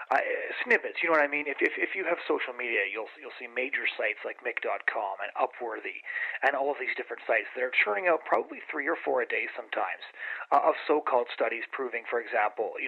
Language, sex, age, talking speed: English, male, 30-49, 225 wpm